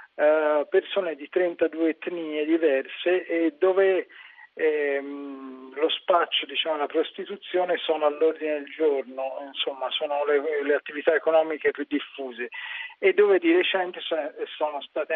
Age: 40-59